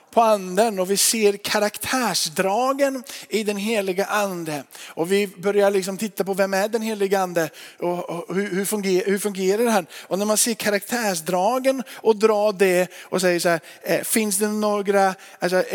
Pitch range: 185-225 Hz